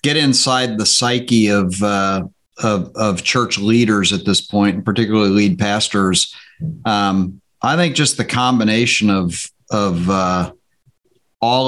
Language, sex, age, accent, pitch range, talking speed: English, male, 50-69, American, 100-120 Hz, 140 wpm